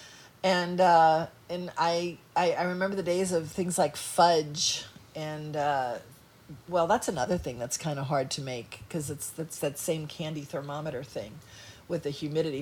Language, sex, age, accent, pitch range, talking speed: English, female, 40-59, American, 150-200 Hz, 170 wpm